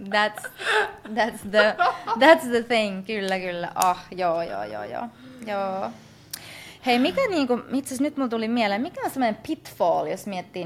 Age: 20-39